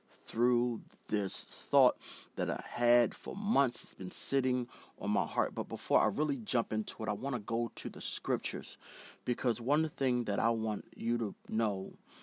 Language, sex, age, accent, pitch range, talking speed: English, male, 40-59, American, 110-135 Hz, 180 wpm